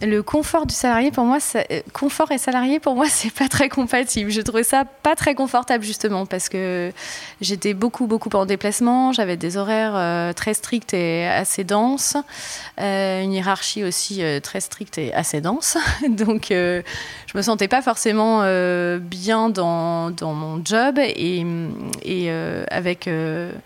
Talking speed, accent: 150 wpm, French